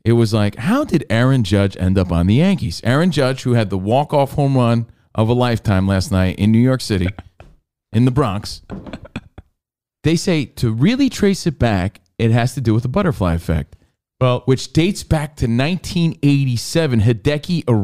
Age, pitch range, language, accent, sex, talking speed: 40-59, 115-180 Hz, English, American, male, 180 wpm